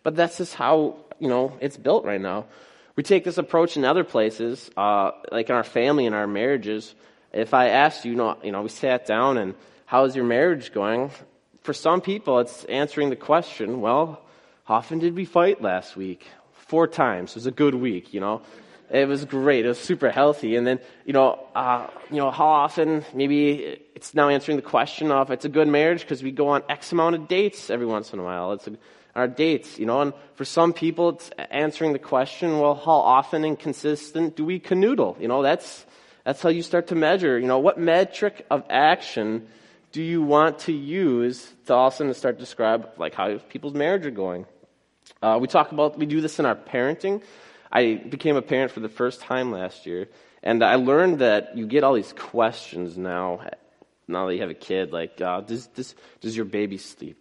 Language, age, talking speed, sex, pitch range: English, 20-39, 215 wpm, male, 115-155 Hz